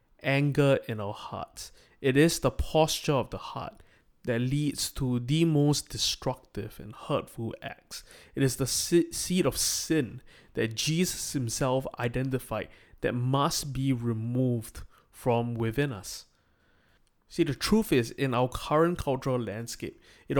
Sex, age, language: male, 20-39, English